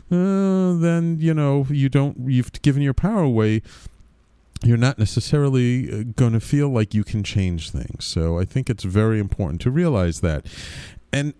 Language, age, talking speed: English, 40-59, 170 wpm